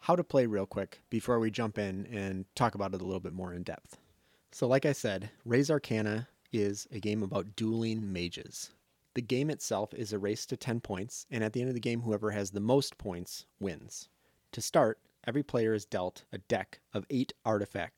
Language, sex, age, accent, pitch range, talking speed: English, male, 30-49, American, 100-125 Hz, 215 wpm